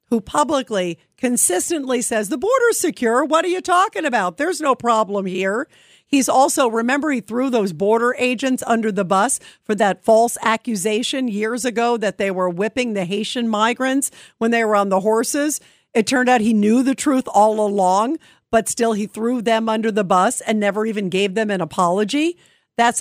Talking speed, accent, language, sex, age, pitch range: 190 wpm, American, English, female, 50-69, 205-255 Hz